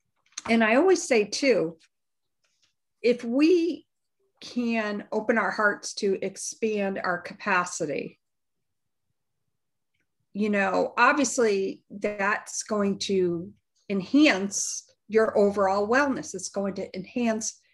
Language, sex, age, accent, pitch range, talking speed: English, female, 50-69, American, 190-255 Hz, 100 wpm